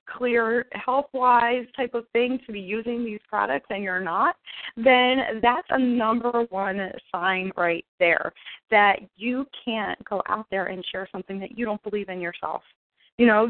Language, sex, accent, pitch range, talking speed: English, female, American, 185-235 Hz, 175 wpm